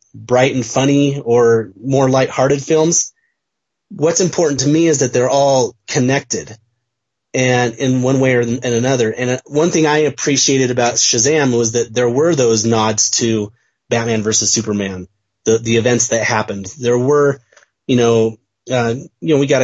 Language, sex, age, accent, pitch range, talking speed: English, male, 30-49, American, 115-140 Hz, 170 wpm